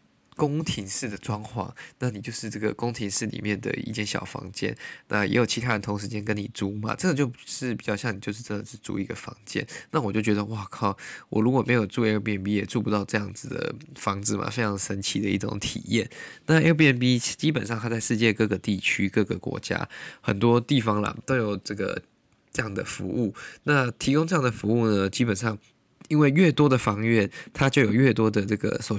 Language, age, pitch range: Chinese, 20-39, 105-125 Hz